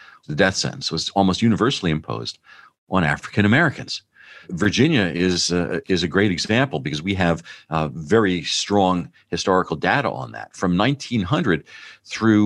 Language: English